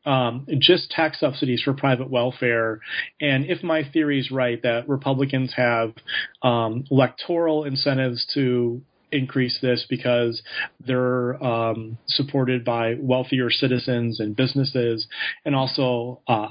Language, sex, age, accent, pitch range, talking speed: English, male, 30-49, American, 125-150 Hz, 125 wpm